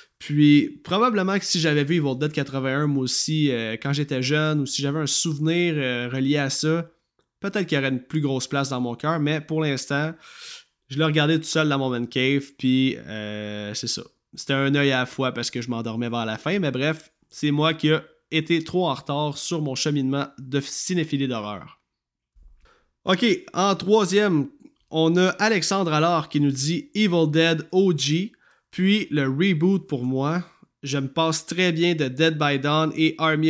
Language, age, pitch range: French, 20-39, 135-170 Hz